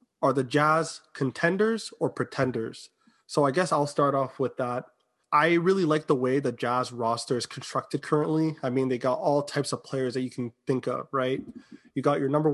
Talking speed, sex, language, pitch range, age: 205 wpm, male, English, 125-145 Hz, 20-39